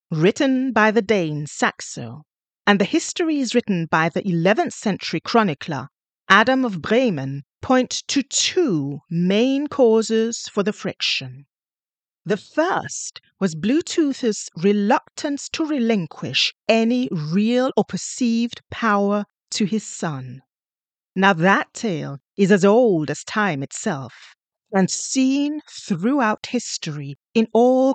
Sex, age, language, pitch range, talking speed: female, 40-59, English, 175-235 Hz, 115 wpm